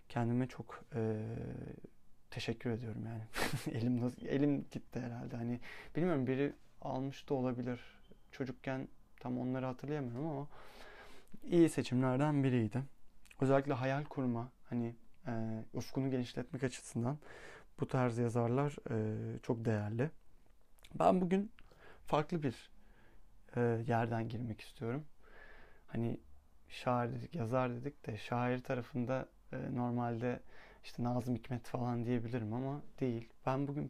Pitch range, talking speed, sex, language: 120-140 Hz, 115 wpm, male, Turkish